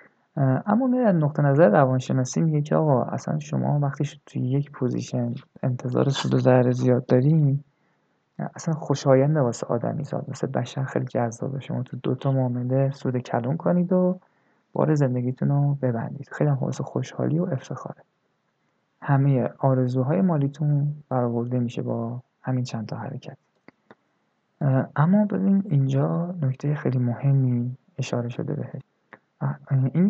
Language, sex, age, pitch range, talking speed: Persian, male, 20-39, 125-150 Hz, 140 wpm